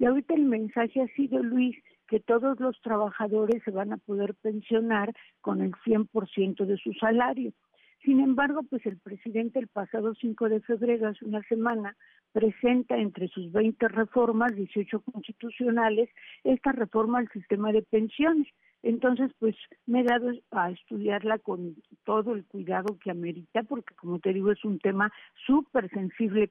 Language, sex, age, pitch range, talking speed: Spanish, female, 50-69, 205-245 Hz, 165 wpm